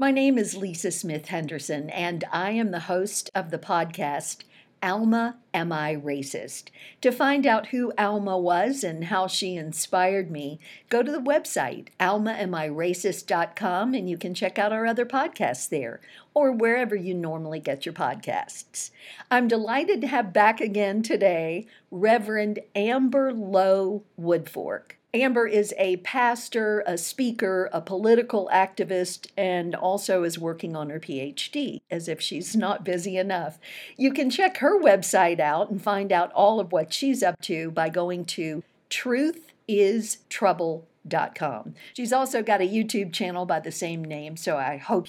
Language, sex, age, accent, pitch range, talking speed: English, female, 50-69, American, 175-230 Hz, 155 wpm